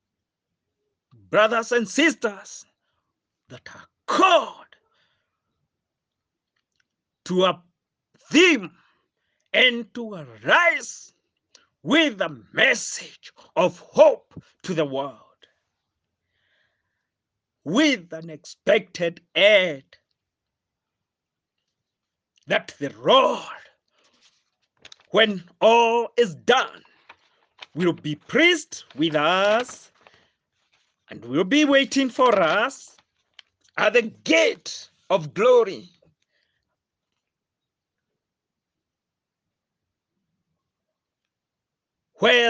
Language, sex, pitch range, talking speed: English, male, 170-250 Hz, 70 wpm